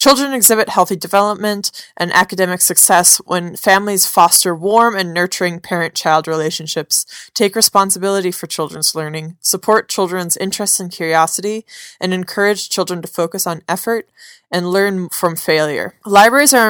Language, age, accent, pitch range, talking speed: English, 20-39, American, 165-215 Hz, 135 wpm